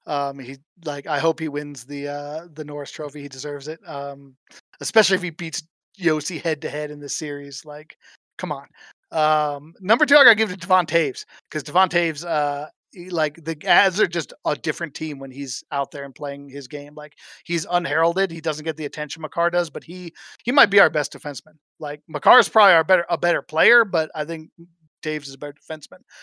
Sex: male